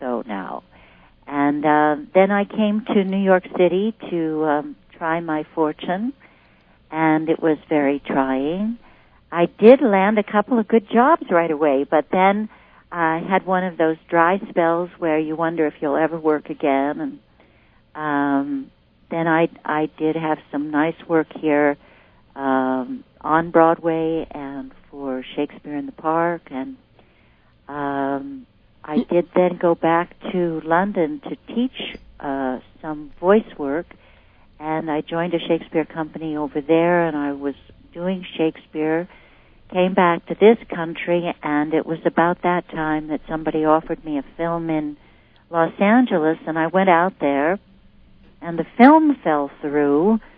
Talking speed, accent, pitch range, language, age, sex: 150 wpm, American, 150-175 Hz, English, 60-79, female